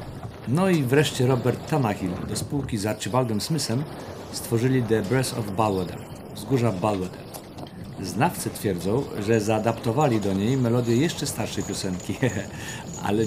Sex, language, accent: male, Polish, native